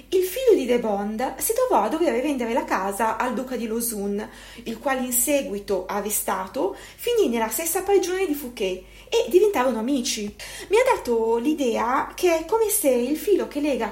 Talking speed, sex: 180 wpm, female